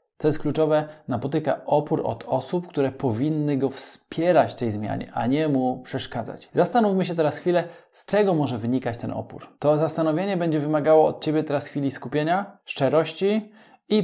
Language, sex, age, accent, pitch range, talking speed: Polish, male, 20-39, native, 125-155 Hz, 165 wpm